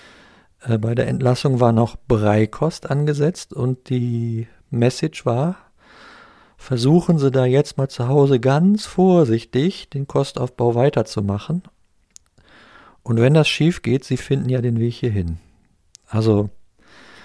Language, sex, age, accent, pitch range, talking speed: German, male, 50-69, German, 115-140 Hz, 120 wpm